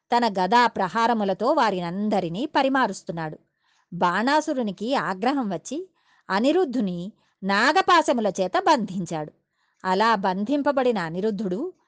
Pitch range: 185-270 Hz